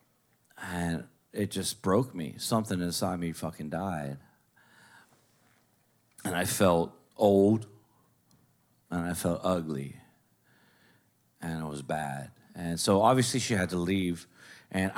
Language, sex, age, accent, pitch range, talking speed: English, male, 40-59, American, 85-120 Hz, 115 wpm